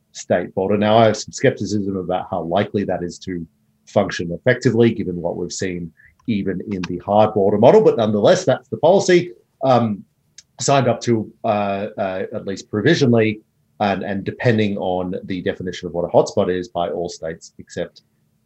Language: English